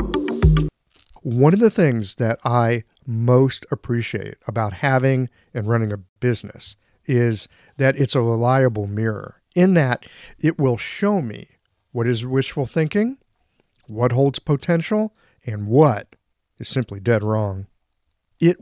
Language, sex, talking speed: English, male, 130 wpm